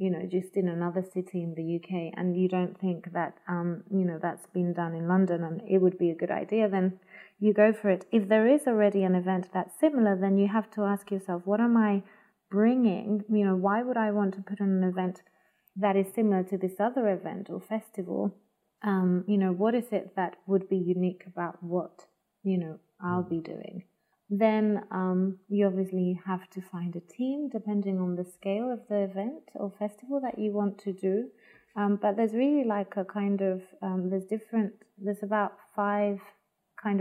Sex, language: female, English